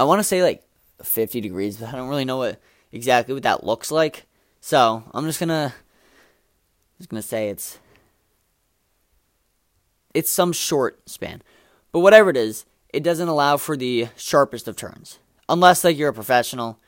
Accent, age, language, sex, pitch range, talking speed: American, 20-39, English, male, 110-145 Hz, 165 wpm